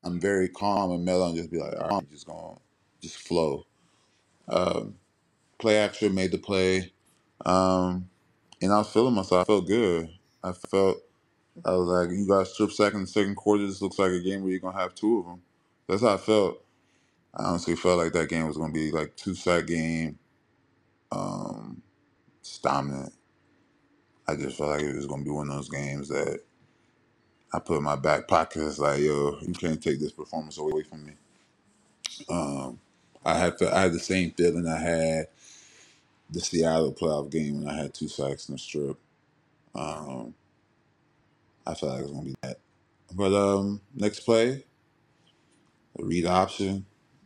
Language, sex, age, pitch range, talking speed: English, male, 20-39, 80-95 Hz, 190 wpm